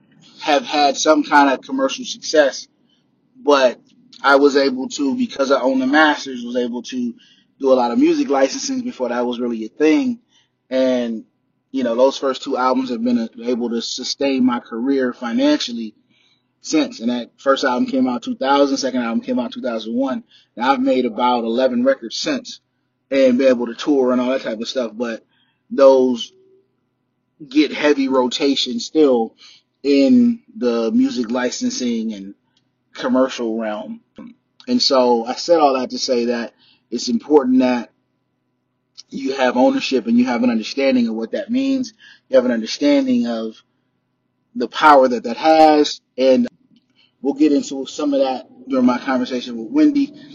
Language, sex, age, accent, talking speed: English, male, 20-39, American, 165 wpm